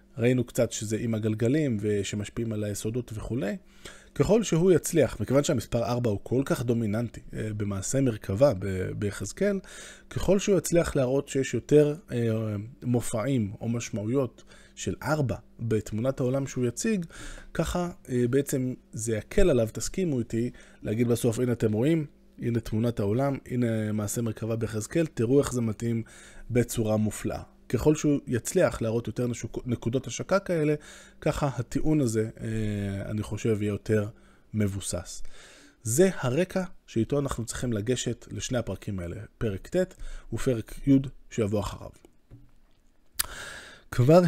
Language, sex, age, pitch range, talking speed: Hebrew, male, 20-39, 110-140 Hz, 125 wpm